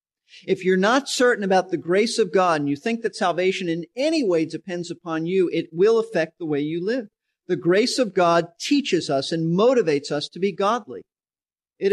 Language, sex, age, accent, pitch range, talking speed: English, male, 50-69, American, 175-225 Hz, 200 wpm